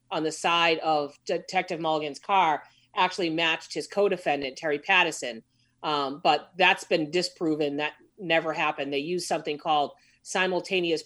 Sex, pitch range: female, 145-185 Hz